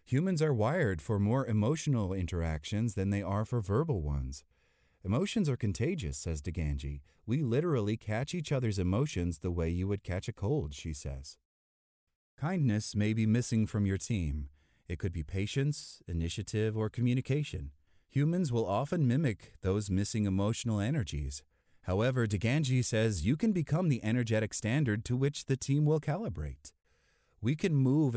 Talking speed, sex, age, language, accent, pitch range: 155 wpm, male, 30-49, English, American, 85-135 Hz